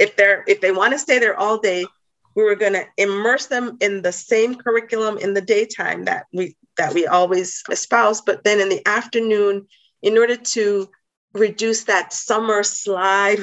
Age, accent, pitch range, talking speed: 40-59, American, 185-225 Hz, 180 wpm